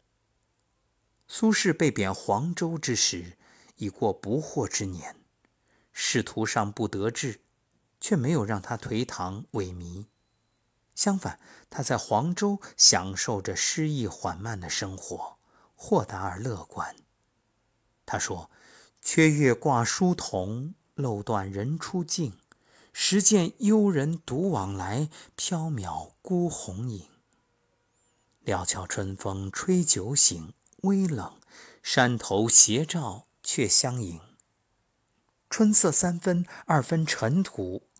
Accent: native